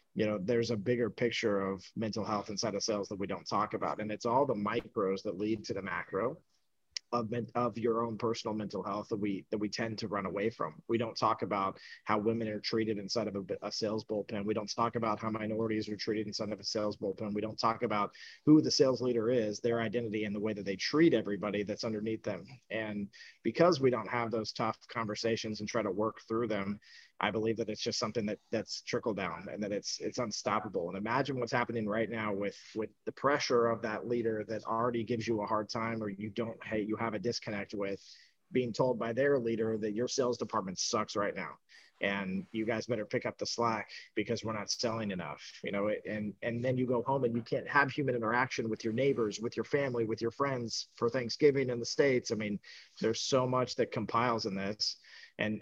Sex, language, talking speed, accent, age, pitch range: male, English, 230 wpm, American, 30-49, 105-120 Hz